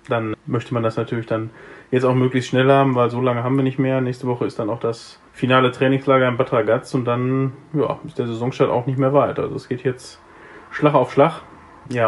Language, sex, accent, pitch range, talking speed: German, male, German, 120-135 Hz, 235 wpm